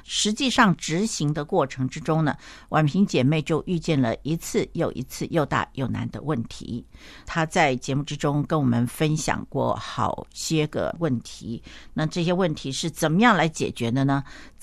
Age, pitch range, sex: 60-79, 135-185 Hz, female